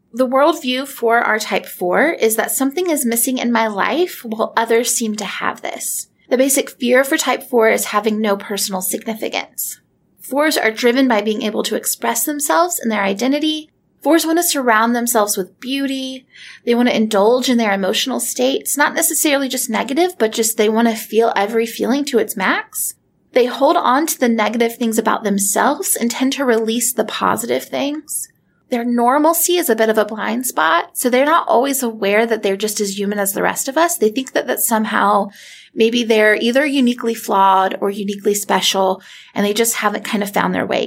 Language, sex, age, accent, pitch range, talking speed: English, female, 30-49, American, 210-265 Hz, 200 wpm